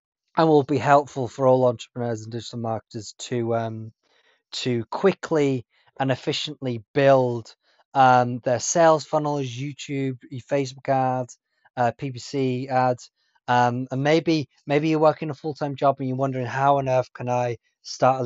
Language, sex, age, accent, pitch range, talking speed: English, male, 20-39, British, 115-135 Hz, 155 wpm